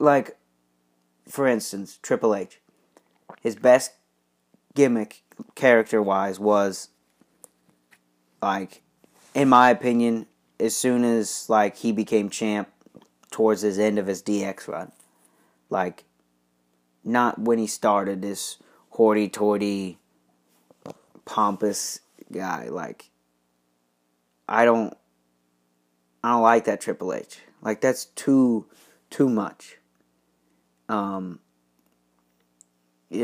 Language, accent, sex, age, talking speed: English, American, male, 30-49, 95 wpm